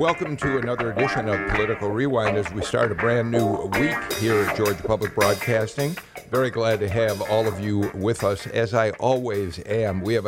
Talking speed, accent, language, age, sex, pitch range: 200 wpm, American, English, 50-69, male, 100-120 Hz